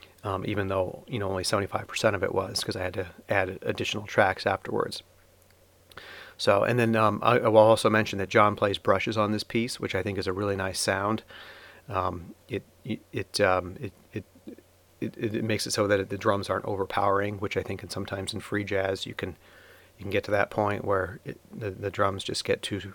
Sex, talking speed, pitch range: male, 220 wpm, 95-105 Hz